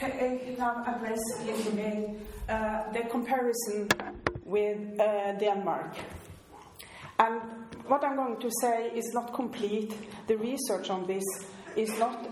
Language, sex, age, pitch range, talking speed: English, female, 40-59, 200-240 Hz, 105 wpm